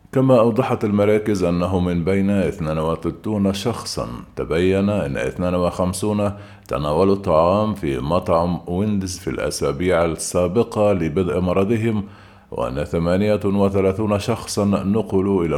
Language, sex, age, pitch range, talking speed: Arabic, male, 50-69, 85-105 Hz, 100 wpm